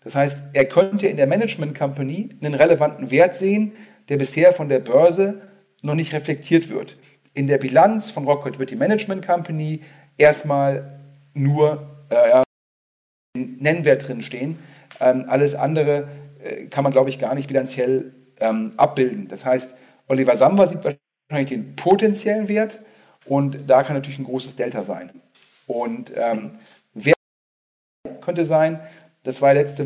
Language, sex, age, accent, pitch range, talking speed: German, male, 40-59, German, 135-165 Hz, 150 wpm